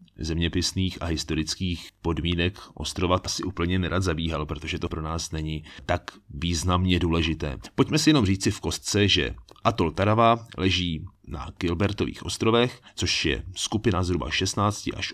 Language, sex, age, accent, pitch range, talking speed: Czech, male, 30-49, native, 80-100 Hz, 145 wpm